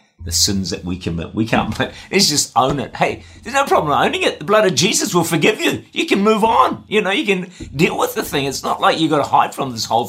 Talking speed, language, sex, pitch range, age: 275 wpm, English, male, 105-160 Hz, 50-69